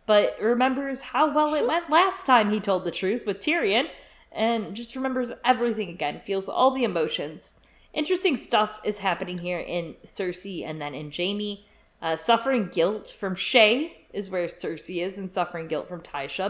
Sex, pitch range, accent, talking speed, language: female, 180-260 Hz, American, 175 wpm, English